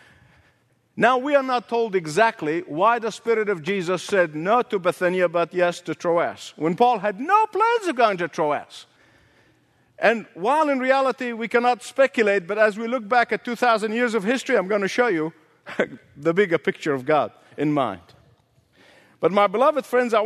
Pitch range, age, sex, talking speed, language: 210-275 Hz, 50-69, male, 185 wpm, English